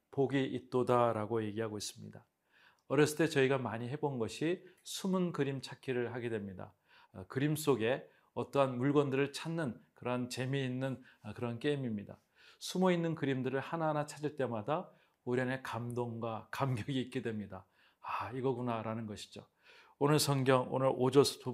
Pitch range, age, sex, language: 120-150 Hz, 40-59, male, Korean